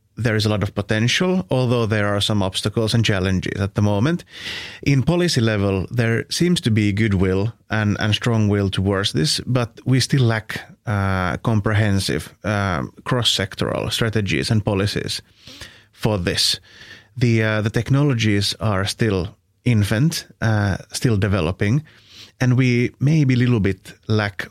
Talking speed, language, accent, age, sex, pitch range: 150 wpm, English, Finnish, 30-49, male, 100-120 Hz